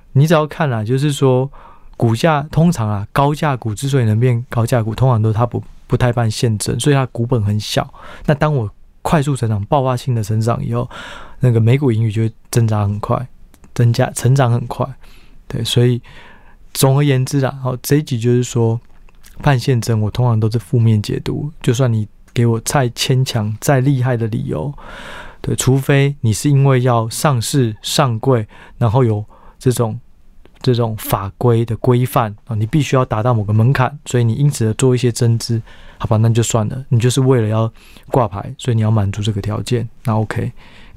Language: Chinese